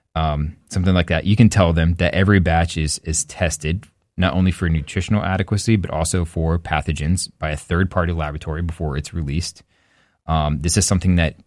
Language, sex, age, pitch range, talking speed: English, male, 20-39, 75-90 Hz, 190 wpm